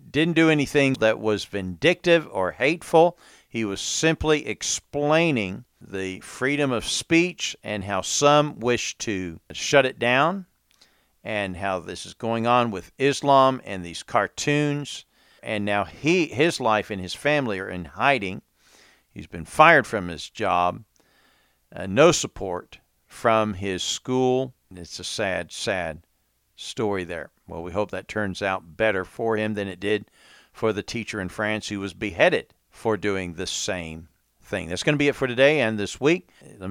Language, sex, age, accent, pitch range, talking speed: English, male, 50-69, American, 95-130 Hz, 165 wpm